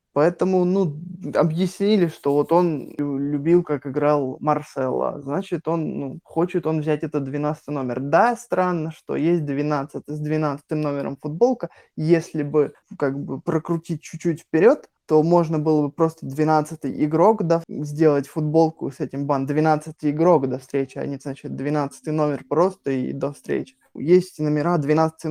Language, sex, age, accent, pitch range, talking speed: Russian, male, 20-39, native, 145-165 Hz, 150 wpm